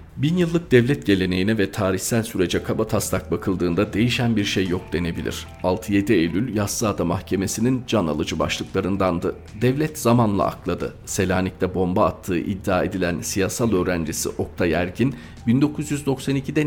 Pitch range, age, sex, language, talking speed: 90-110 Hz, 40-59, male, Turkish, 120 wpm